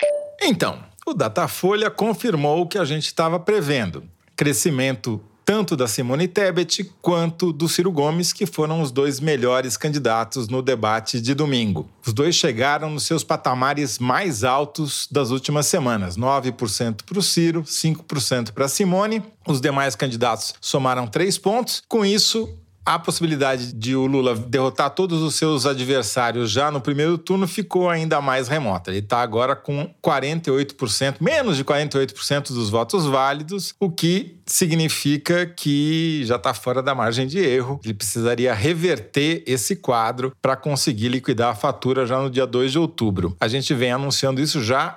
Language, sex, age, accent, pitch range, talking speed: Portuguese, male, 40-59, Brazilian, 130-170 Hz, 155 wpm